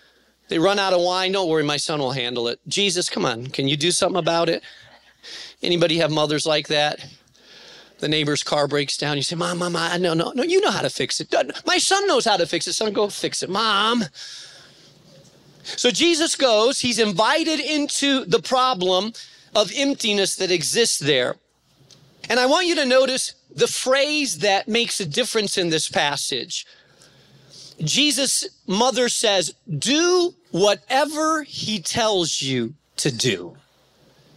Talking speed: 165 wpm